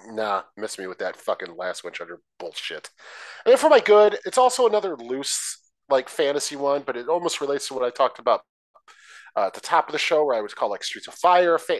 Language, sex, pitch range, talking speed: English, male, 120-175 Hz, 235 wpm